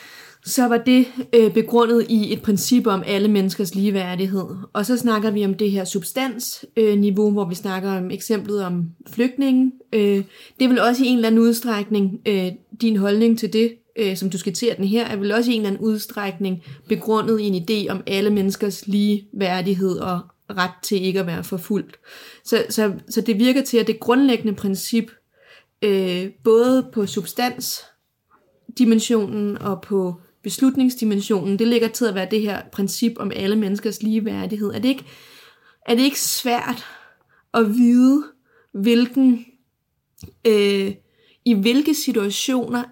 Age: 30-49